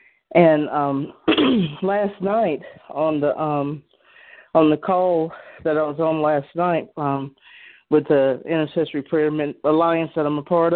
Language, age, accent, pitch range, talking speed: English, 50-69, American, 155-190 Hz, 145 wpm